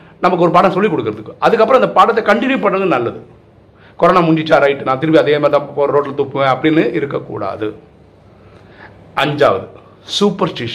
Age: 40-59